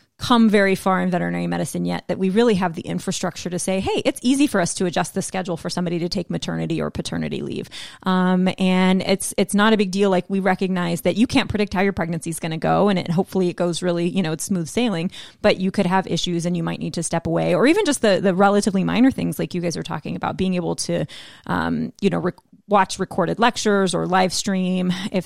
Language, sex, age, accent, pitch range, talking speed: English, female, 30-49, American, 175-205 Hz, 245 wpm